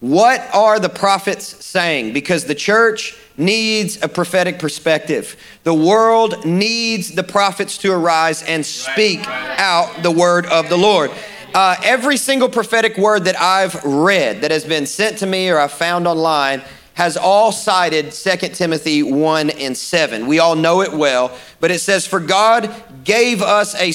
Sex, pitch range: male, 165-210 Hz